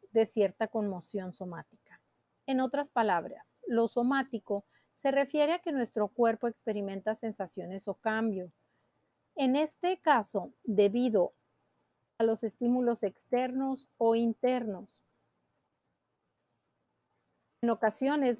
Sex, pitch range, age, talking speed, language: female, 210-255 Hz, 40-59, 100 wpm, Spanish